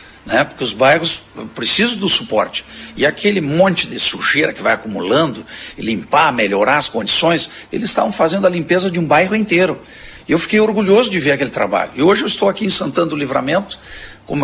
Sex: male